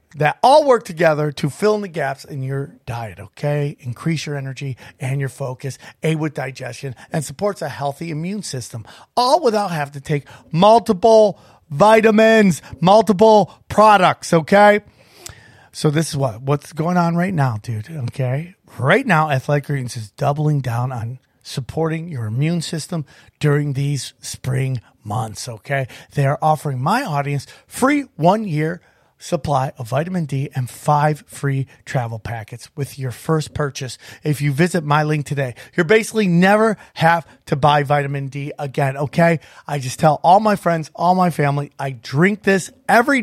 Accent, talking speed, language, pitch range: American, 160 wpm, English, 135-175 Hz